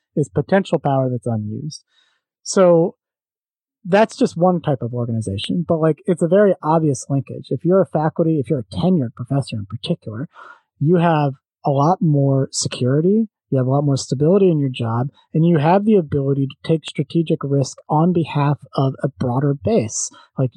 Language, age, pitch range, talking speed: English, 30-49, 135-175 Hz, 180 wpm